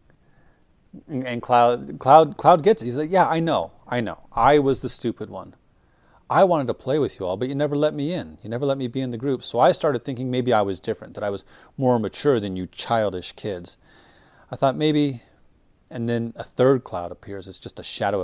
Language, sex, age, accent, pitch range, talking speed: English, male, 30-49, American, 95-130 Hz, 225 wpm